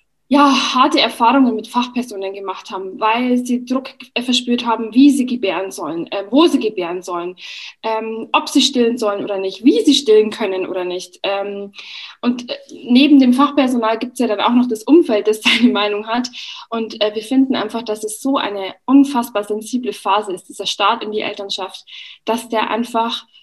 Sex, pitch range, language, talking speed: female, 205-255 Hz, German, 175 wpm